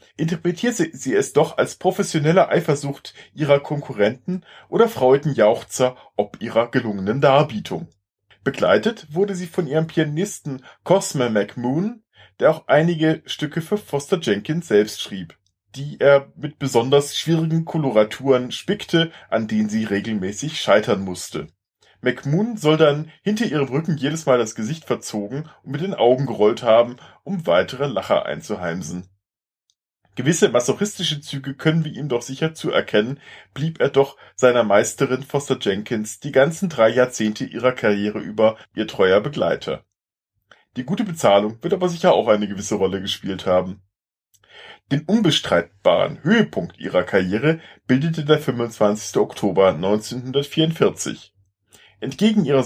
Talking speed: 135 wpm